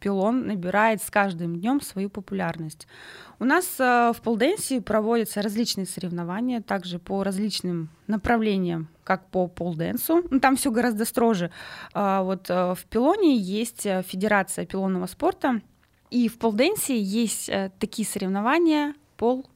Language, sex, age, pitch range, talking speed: Russian, female, 20-39, 180-225 Hz, 135 wpm